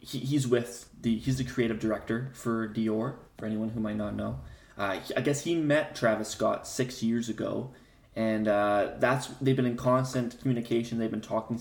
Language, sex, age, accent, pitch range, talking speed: English, male, 20-39, American, 105-125 Hz, 185 wpm